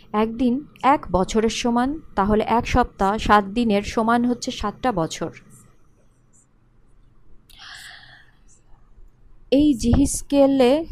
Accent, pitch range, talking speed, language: native, 190-250 Hz, 80 wpm, Bengali